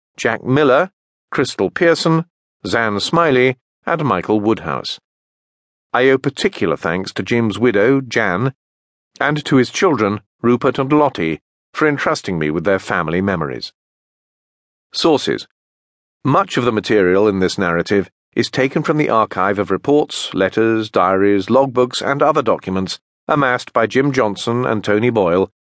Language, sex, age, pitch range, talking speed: English, male, 40-59, 95-135 Hz, 140 wpm